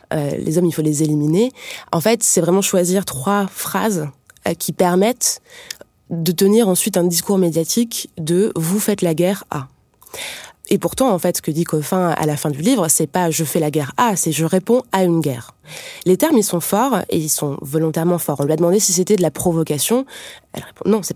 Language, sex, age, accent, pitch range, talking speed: French, female, 20-39, French, 155-195 Hz, 235 wpm